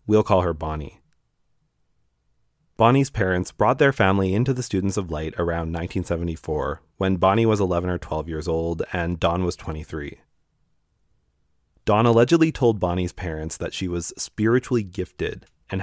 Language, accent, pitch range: English, American, 85-110 Hz